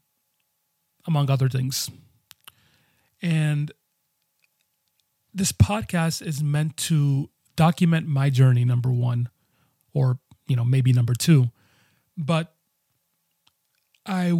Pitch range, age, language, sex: 130-150 Hz, 30-49, English, male